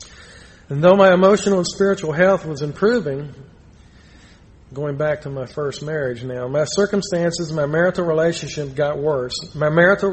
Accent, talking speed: American, 150 wpm